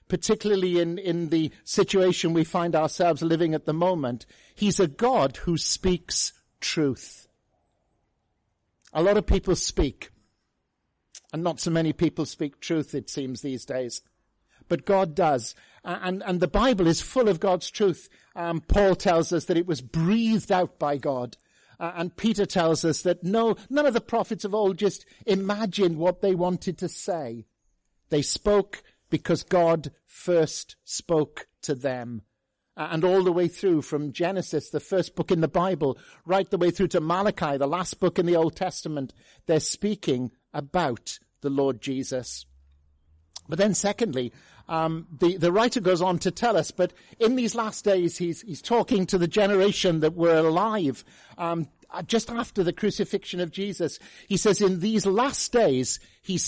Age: 50-69